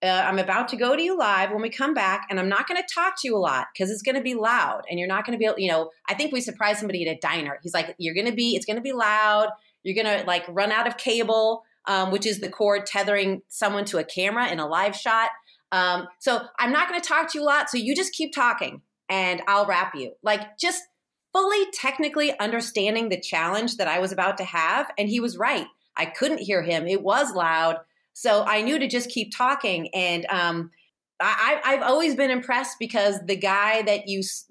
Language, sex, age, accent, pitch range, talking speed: English, female, 30-49, American, 195-250 Hz, 245 wpm